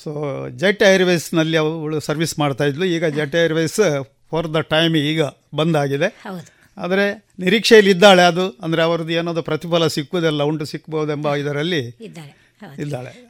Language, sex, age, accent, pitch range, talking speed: Kannada, male, 50-69, native, 150-185 Hz, 120 wpm